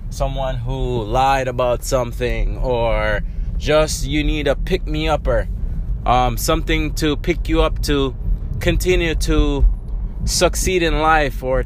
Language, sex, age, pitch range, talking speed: English, male, 20-39, 115-155 Hz, 120 wpm